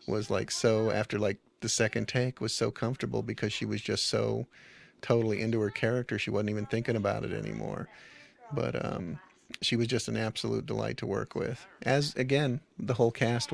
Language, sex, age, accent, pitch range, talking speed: English, male, 40-59, American, 100-115 Hz, 190 wpm